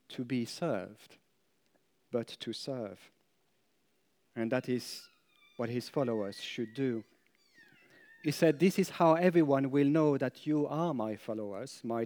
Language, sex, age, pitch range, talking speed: English, male, 40-59, 120-155 Hz, 140 wpm